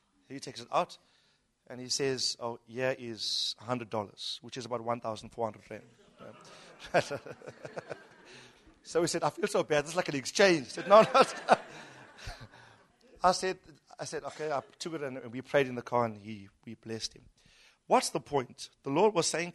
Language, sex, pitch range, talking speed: English, male, 125-180 Hz, 175 wpm